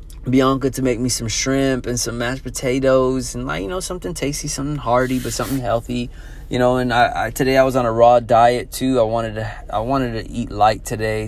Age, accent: 20-39, American